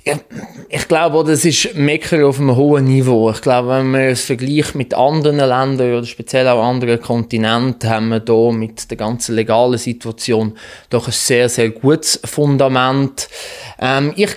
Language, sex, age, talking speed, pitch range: German, male, 20-39, 160 wpm, 125-150 Hz